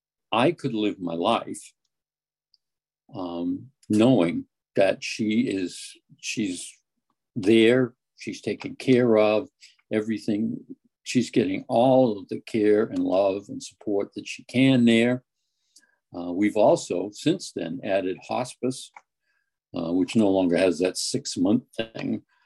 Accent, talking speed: American, 125 wpm